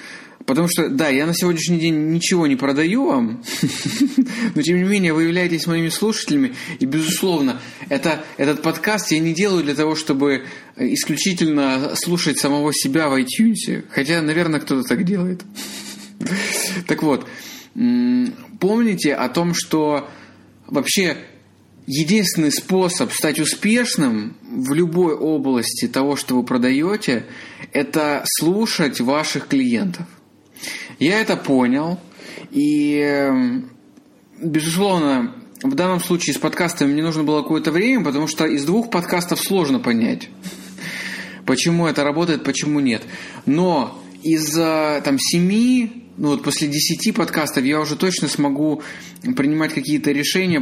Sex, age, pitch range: male, 20-39, 145-215 Hz